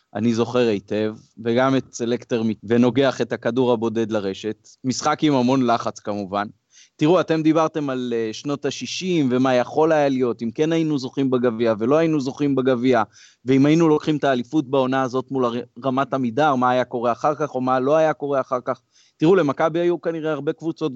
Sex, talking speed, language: male, 180 wpm, Hebrew